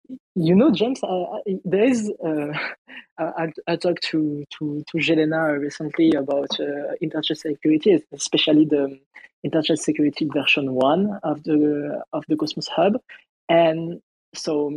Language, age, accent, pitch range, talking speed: English, 20-39, French, 150-175 Hz, 135 wpm